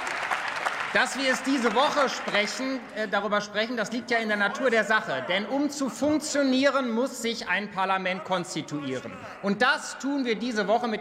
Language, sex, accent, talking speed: German, male, German, 175 wpm